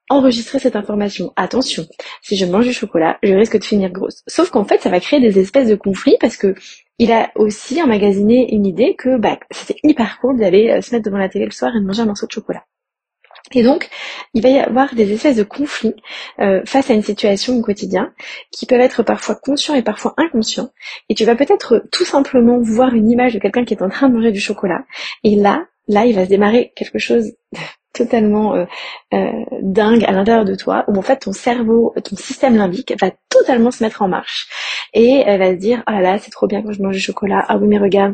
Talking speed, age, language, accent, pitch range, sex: 235 wpm, 20-39, French, French, 200-250 Hz, female